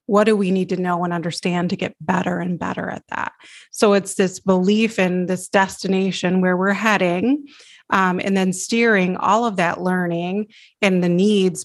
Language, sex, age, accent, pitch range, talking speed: English, female, 30-49, American, 180-205 Hz, 185 wpm